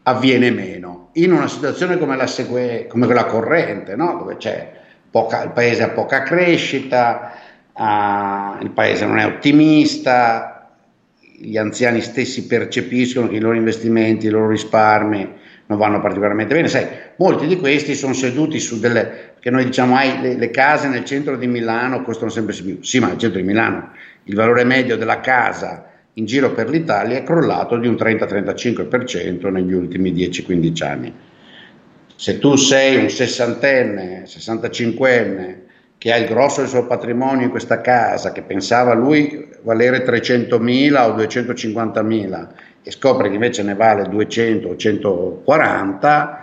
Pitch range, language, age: 110-130 Hz, Italian, 50-69